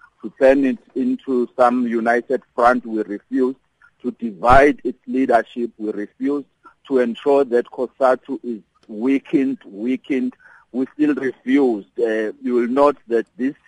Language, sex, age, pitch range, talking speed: English, male, 50-69, 120-140 Hz, 135 wpm